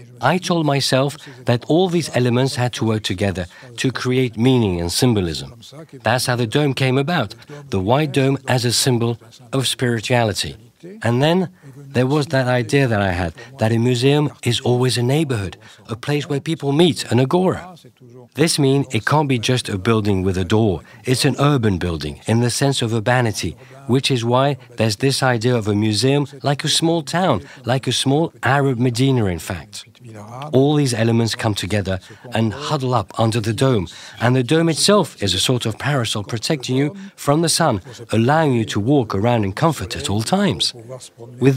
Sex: male